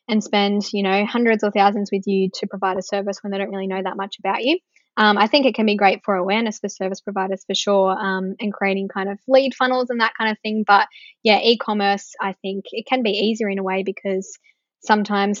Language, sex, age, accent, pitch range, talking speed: English, female, 10-29, Australian, 195-220 Hz, 240 wpm